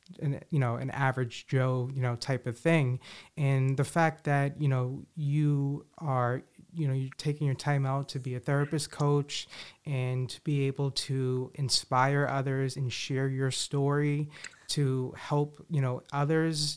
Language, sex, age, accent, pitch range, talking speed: English, male, 30-49, American, 125-145 Hz, 160 wpm